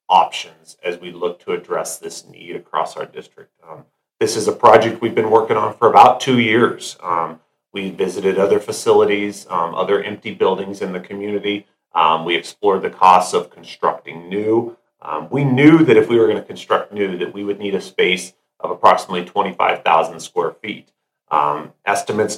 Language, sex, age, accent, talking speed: English, male, 30-49, American, 185 wpm